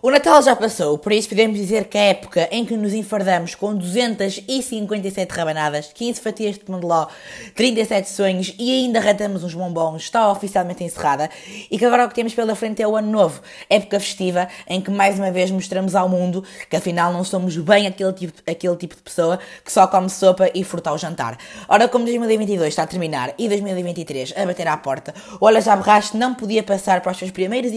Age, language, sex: 20-39, Portuguese, female